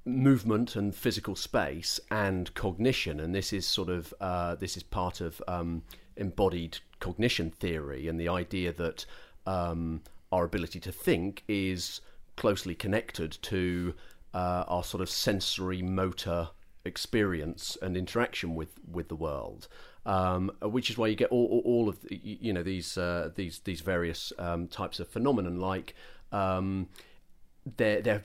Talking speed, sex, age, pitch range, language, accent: 150 wpm, male, 40-59, 90-105 Hz, English, British